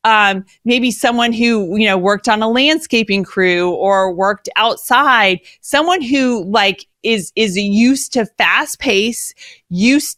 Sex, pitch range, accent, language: female, 190-235 Hz, American, English